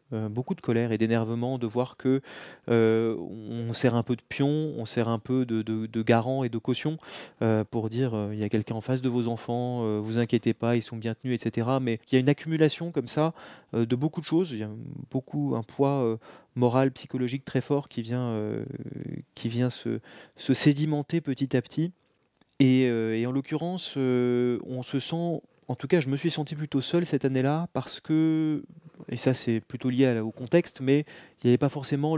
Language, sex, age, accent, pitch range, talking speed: French, male, 20-39, French, 115-140 Hz, 220 wpm